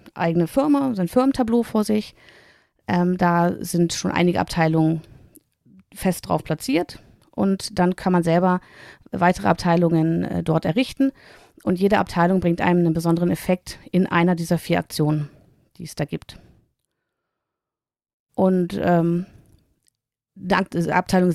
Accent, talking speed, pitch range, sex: German, 130 wpm, 170-205 Hz, female